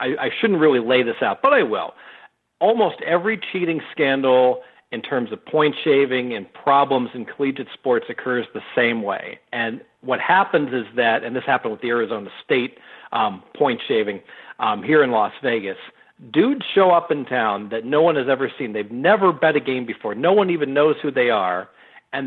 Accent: American